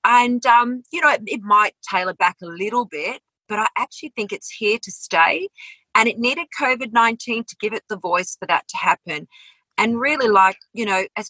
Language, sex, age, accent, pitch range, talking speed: English, female, 40-59, Australian, 185-240 Hz, 205 wpm